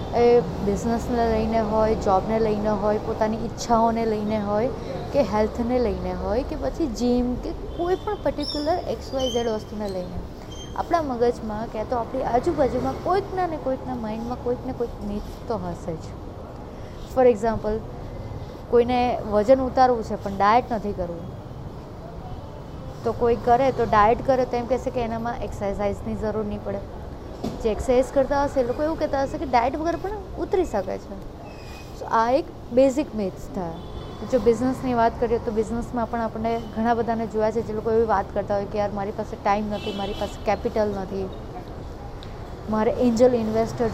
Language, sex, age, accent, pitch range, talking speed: Gujarati, female, 20-39, native, 210-255 Hz, 160 wpm